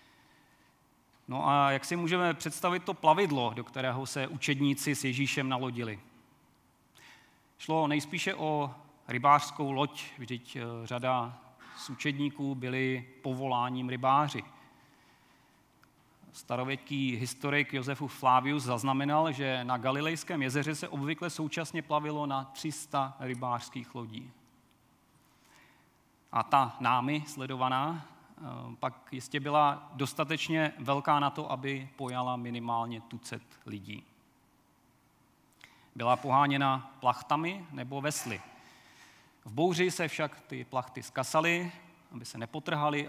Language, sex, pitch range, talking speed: Czech, male, 125-150 Hz, 105 wpm